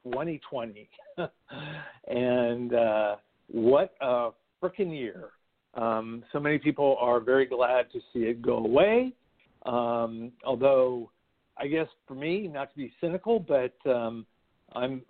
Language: English